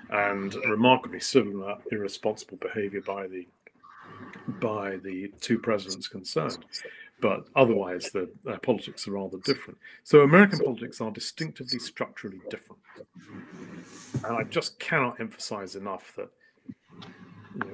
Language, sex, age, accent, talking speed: English, male, 40-59, British, 120 wpm